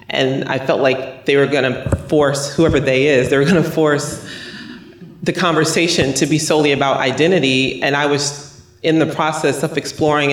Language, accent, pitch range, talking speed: English, American, 125-150 Hz, 175 wpm